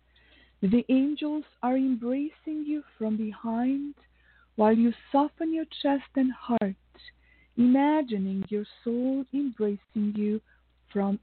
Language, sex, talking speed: English, female, 105 wpm